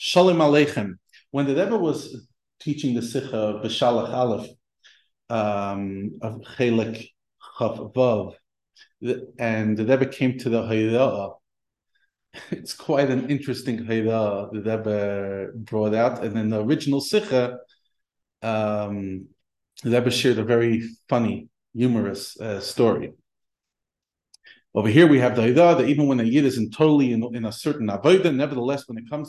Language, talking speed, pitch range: English, 140 wpm, 115-150 Hz